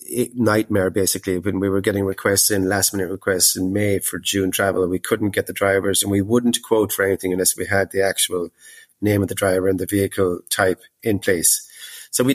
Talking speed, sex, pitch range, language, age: 215 wpm, male, 95-105 Hz, English, 30-49